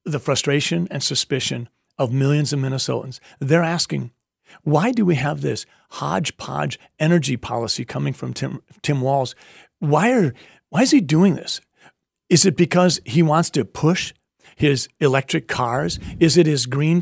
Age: 50-69